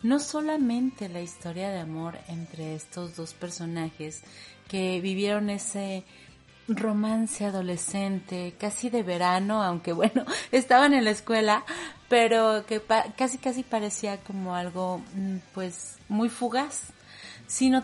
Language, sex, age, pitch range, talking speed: Spanish, female, 30-49, 180-230 Hz, 120 wpm